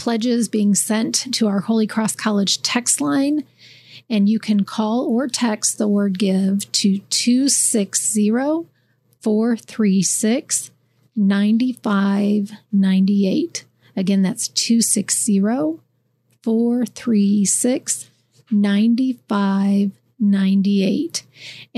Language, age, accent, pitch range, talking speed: English, 40-59, American, 200-235 Hz, 65 wpm